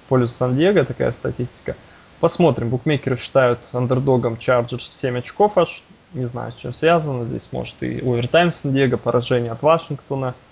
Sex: male